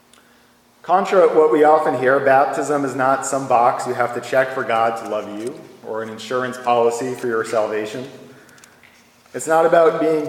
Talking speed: 180 wpm